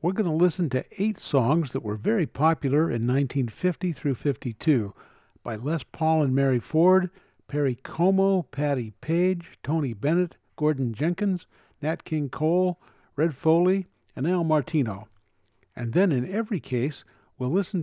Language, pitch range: English, 130-180 Hz